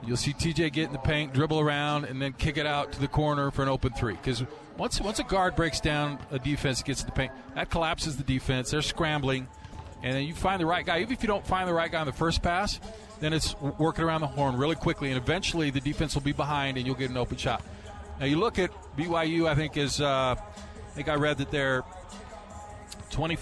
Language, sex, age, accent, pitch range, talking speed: English, male, 40-59, American, 125-160 Hz, 245 wpm